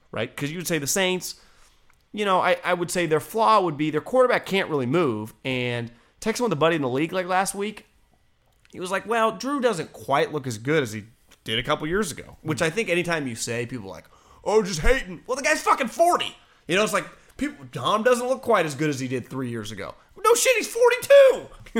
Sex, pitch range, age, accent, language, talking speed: male, 125-195 Hz, 30-49, American, English, 240 wpm